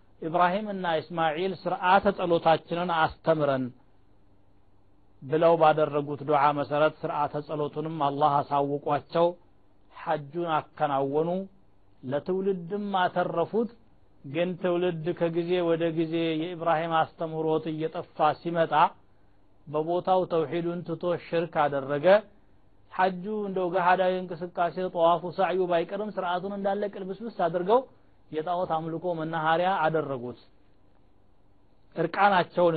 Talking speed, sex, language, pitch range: 90 wpm, male, Amharic, 140-185 Hz